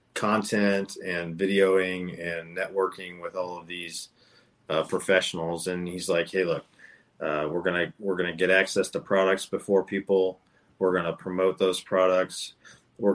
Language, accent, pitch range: English, American, 90-100 Hz